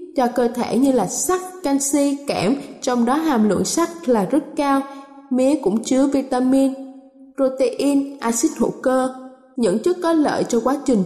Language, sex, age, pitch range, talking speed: Vietnamese, female, 10-29, 245-295 Hz, 170 wpm